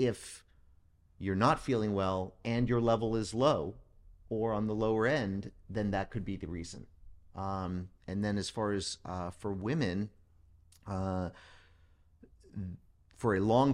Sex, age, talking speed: male, 40-59, 150 wpm